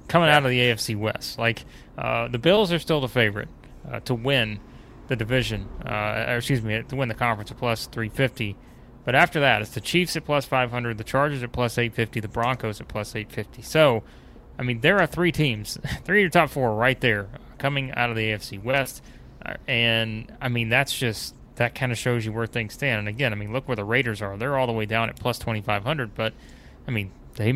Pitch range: 110-135 Hz